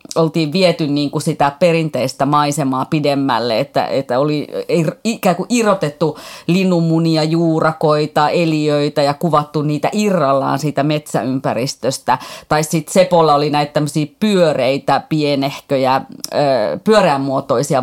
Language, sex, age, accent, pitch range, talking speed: Finnish, female, 30-49, native, 145-180 Hz, 105 wpm